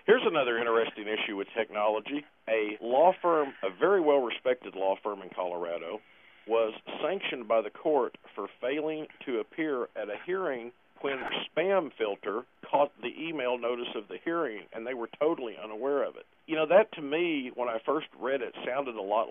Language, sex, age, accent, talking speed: English, male, 50-69, American, 185 wpm